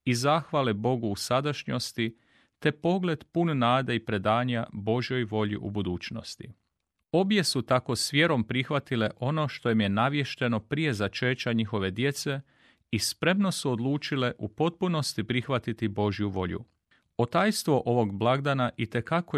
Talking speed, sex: 135 wpm, male